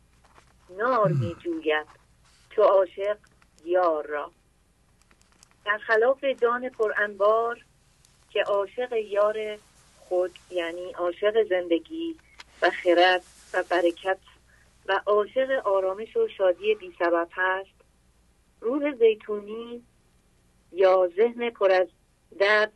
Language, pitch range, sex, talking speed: English, 165-215 Hz, female, 100 wpm